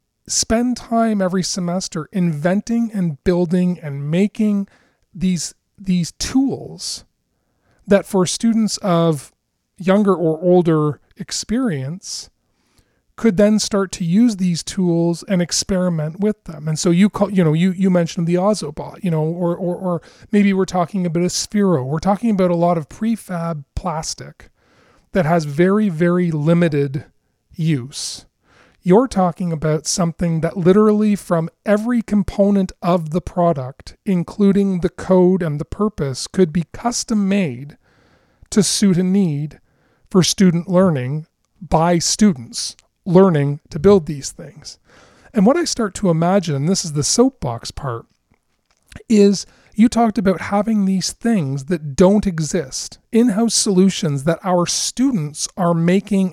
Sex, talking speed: male, 140 wpm